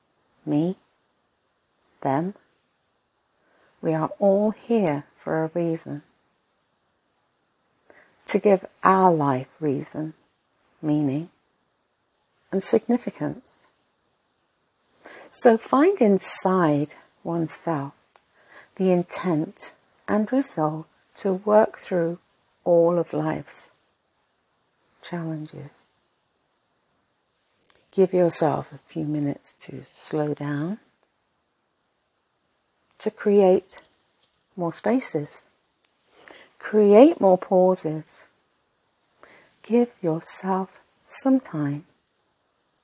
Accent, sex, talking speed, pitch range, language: British, female, 70 wpm, 155-210 Hz, English